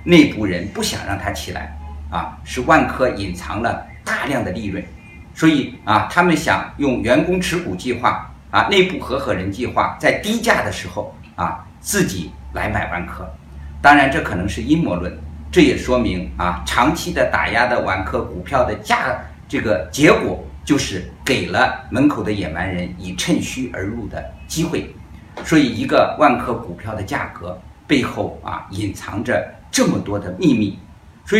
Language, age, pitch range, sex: Chinese, 50-69, 80-130 Hz, male